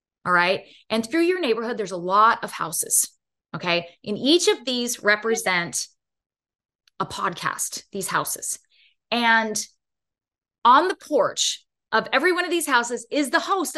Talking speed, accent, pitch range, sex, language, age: 150 wpm, American, 205-295 Hz, female, English, 20-39